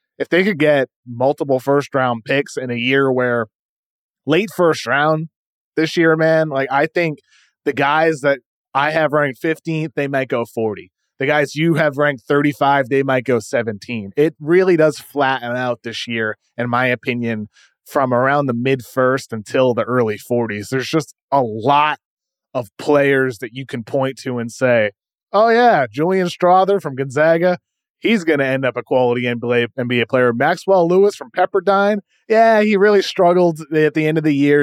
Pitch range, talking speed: 125-170 Hz, 180 wpm